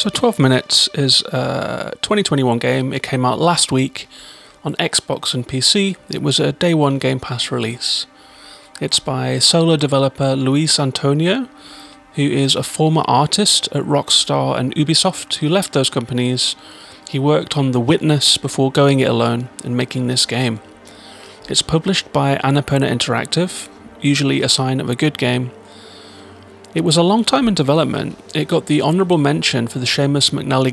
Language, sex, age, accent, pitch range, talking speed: English, male, 30-49, British, 120-150 Hz, 165 wpm